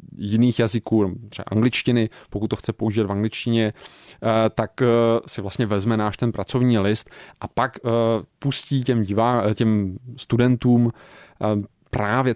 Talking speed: 125 wpm